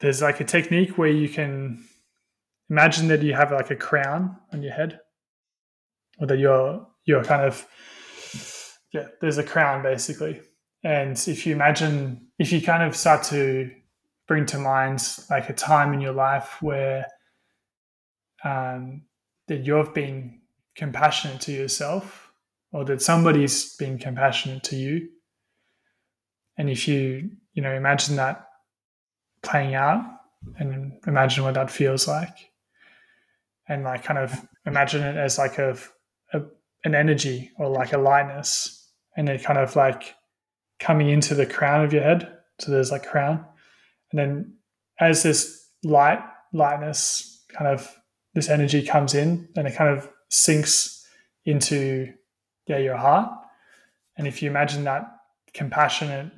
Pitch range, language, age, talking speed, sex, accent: 135-155 Hz, English, 20-39, 145 wpm, male, Australian